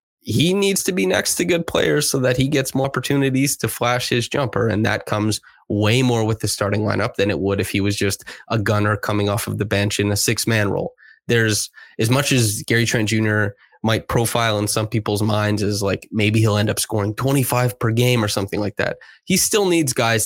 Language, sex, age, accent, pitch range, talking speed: English, male, 20-39, American, 105-125 Hz, 230 wpm